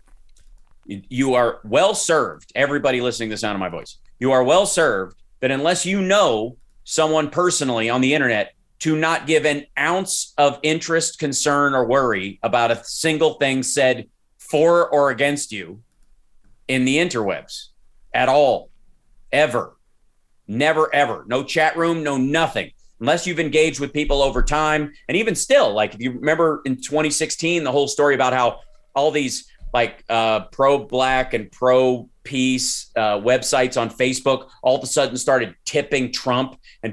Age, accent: 40-59, American